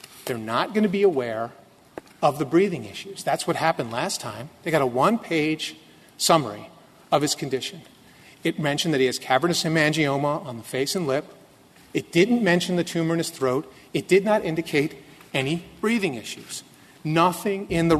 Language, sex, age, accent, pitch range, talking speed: English, male, 40-59, American, 145-195 Hz, 175 wpm